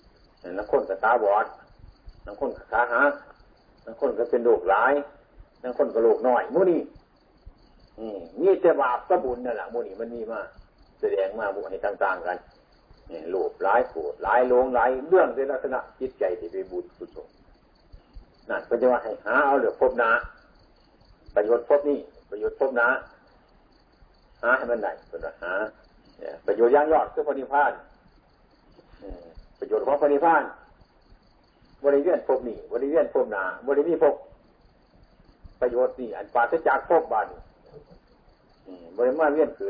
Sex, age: male, 60-79